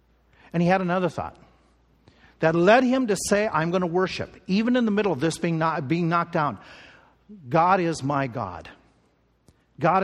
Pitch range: 145-195 Hz